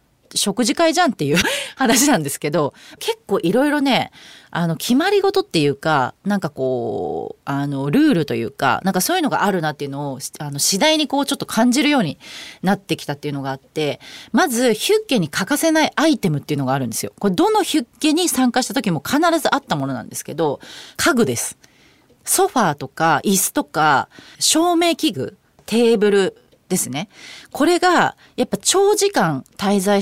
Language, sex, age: Japanese, female, 30-49